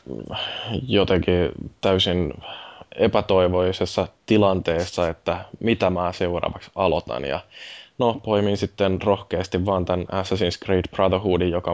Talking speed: 100 wpm